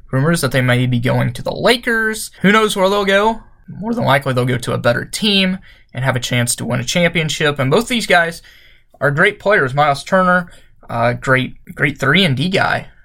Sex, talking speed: male, 215 wpm